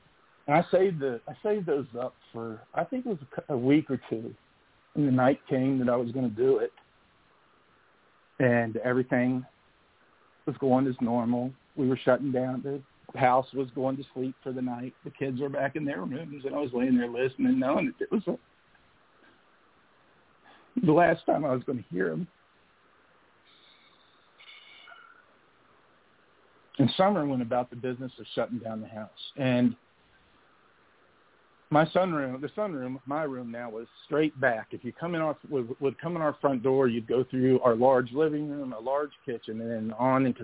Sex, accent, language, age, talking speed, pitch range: male, American, English, 50-69, 175 wpm, 125-145 Hz